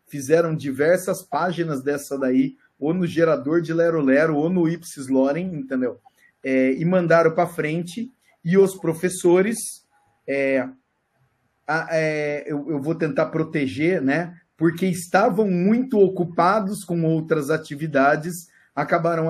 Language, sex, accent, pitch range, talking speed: Portuguese, male, Brazilian, 145-205 Hz, 125 wpm